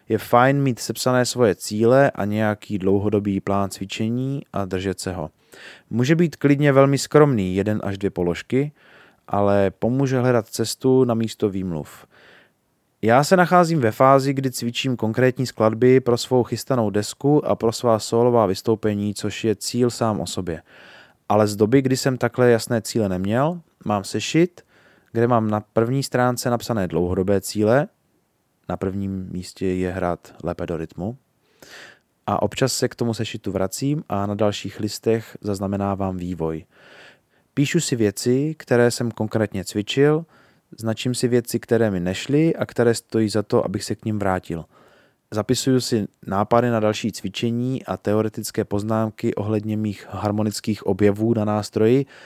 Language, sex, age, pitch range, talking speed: Czech, male, 20-39, 100-125 Hz, 155 wpm